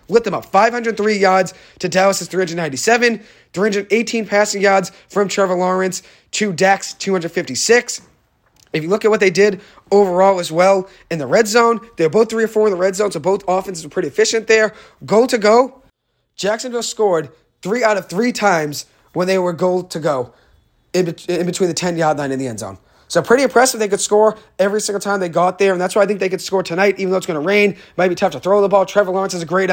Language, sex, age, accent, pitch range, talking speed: English, male, 30-49, American, 180-210 Hz, 230 wpm